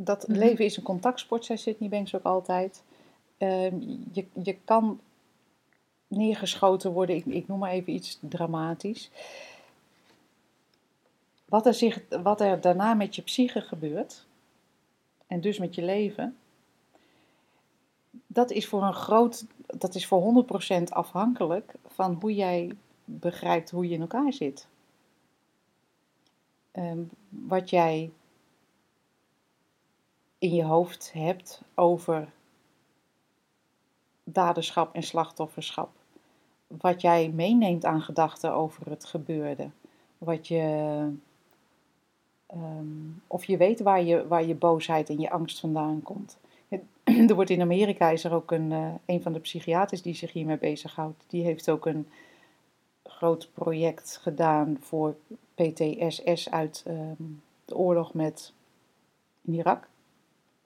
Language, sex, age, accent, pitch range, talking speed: Dutch, female, 40-59, Dutch, 165-205 Hz, 120 wpm